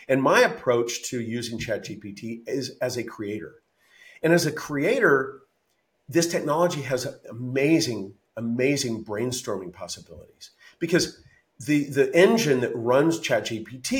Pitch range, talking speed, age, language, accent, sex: 120-160 Hz, 120 wpm, 50-69, English, American, male